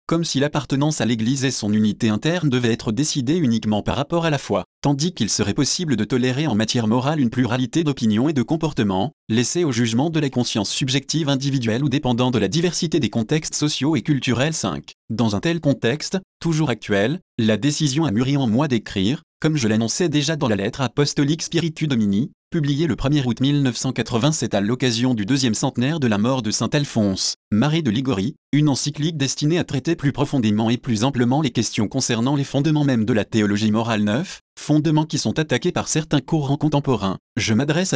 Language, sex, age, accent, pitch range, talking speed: French, male, 30-49, French, 115-150 Hz, 195 wpm